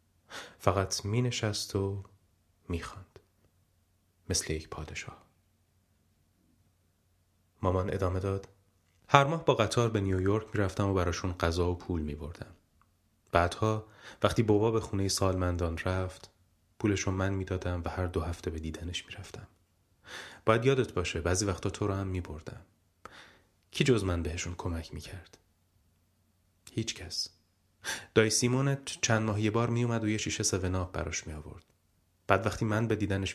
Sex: male